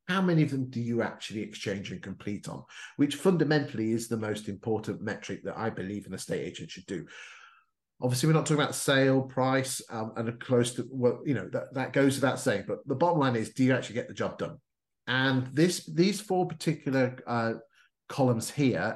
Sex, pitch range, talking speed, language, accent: male, 115-140 Hz, 210 wpm, English, British